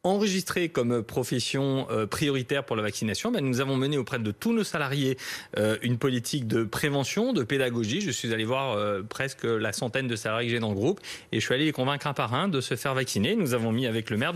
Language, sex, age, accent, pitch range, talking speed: French, male, 30-49, French, 115-145 Hz, 225 wpm